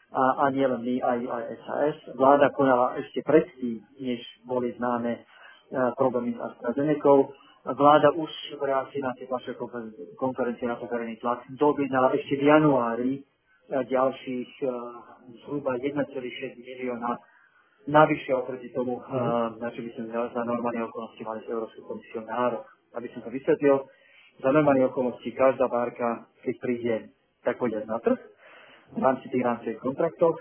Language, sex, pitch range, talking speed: Slovak, male, 120-135 Hz, 150 wpm